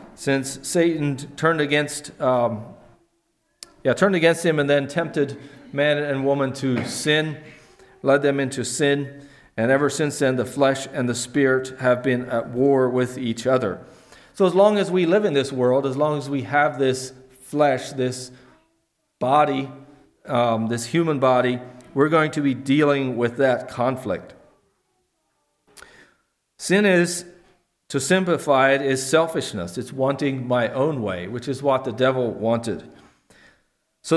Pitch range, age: 125-155 Hz, 40-59